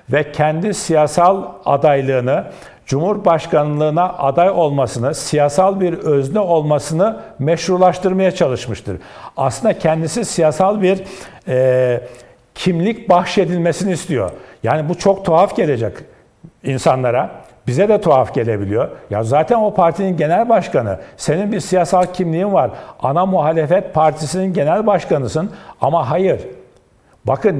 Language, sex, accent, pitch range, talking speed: Turkish, male, native, 145-190 Hz, 110 wpm